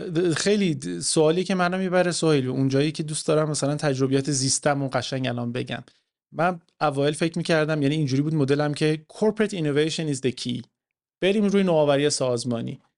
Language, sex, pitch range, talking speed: English, male, 135-170 Hz, 160 wpm